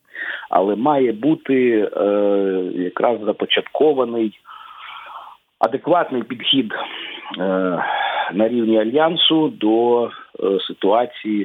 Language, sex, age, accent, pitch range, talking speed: Ukrainian, male, 50-69, native, 105-140 Hz, 80 wpm